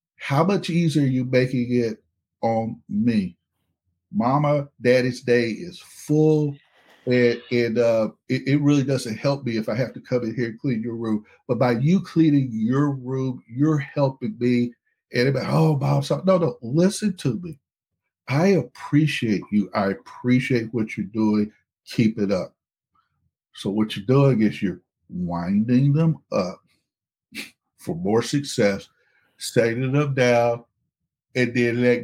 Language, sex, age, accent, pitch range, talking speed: English, male, 50-69, American, 115-140 Hz, 150 wpm